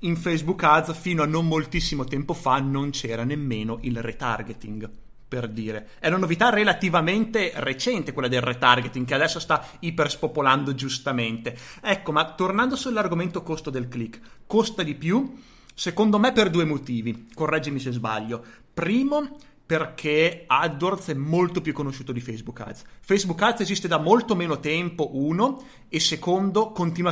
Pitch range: 130-185 Hz